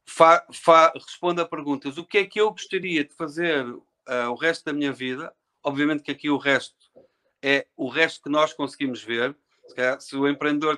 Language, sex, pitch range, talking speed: Portuguese, male, 145-180 Hz, 200 wpm